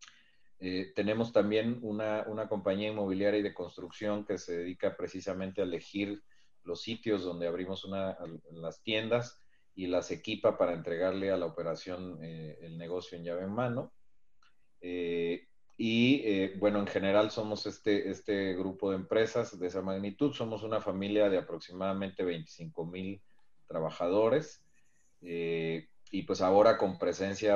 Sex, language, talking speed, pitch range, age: male, Spanish, 150 wpm, 90-105 Hz, 40-59